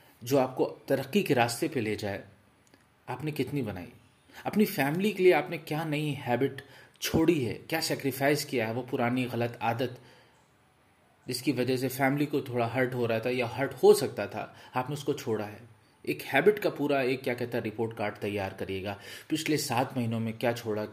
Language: Hindi